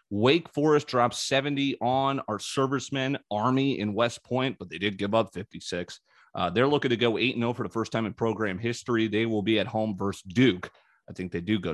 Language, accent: English, American